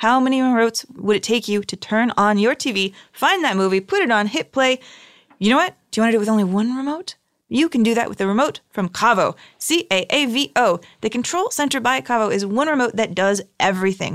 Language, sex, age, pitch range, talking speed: English, female, 20-39, 200-275 Hz, 230 wpm